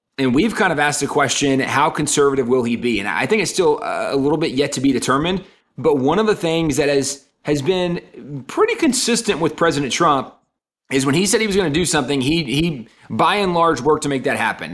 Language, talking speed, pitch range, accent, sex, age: English, 235 wpm, 135-165 Hz, American, male, 30-49